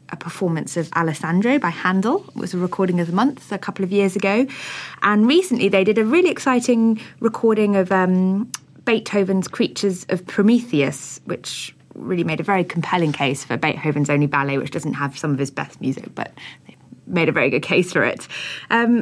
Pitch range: 150-205 Hz